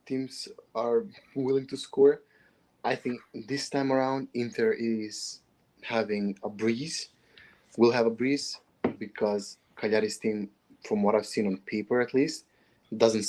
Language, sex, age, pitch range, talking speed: English, male, 20-39, 105-130 Hz, 140 wpm